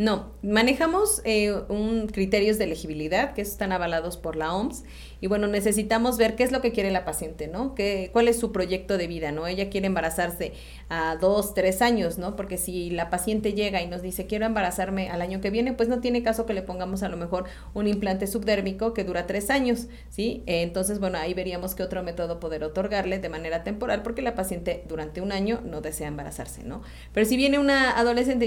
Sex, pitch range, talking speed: female, 170-210 Hz, 210 wpm